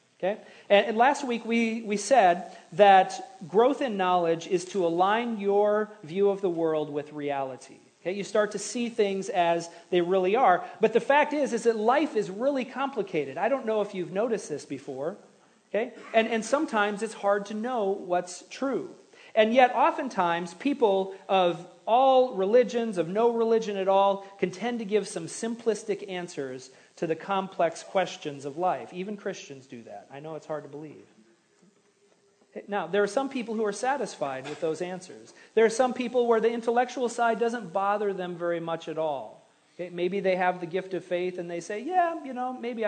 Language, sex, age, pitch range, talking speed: English, male, 40-59, 175-225 Hz, 190 wpm